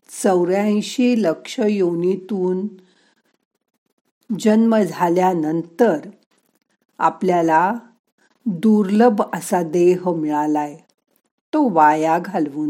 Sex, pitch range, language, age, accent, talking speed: female, 170-225 Hz, Marathi, 50-69, native, 65 wpm